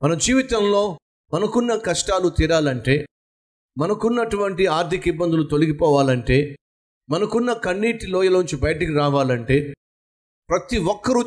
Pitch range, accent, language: 135-205 Hz, native, Telugu